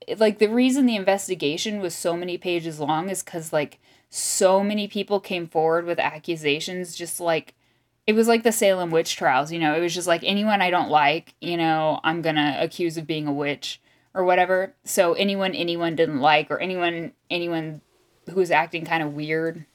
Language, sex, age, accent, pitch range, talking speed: English, female, 10-29, American, 155-190 Hz, 200 wpm